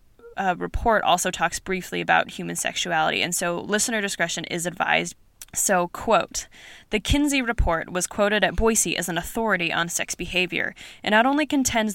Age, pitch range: 20-39, 170-210 Hz